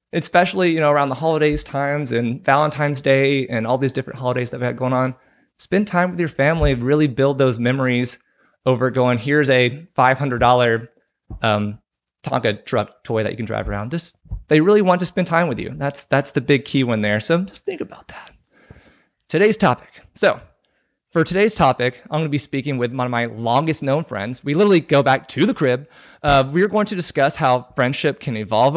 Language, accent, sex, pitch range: English, American, male, 130-165 Hz